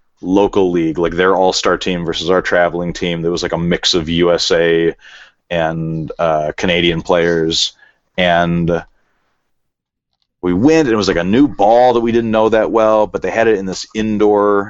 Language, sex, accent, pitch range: English, male, American, 90-110 Hz